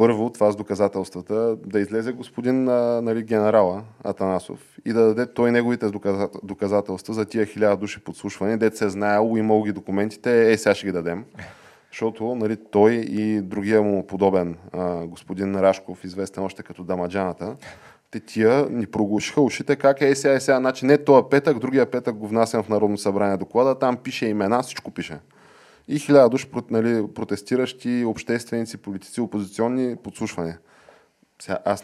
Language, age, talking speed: Bulgarian, 20-39, 160 wpm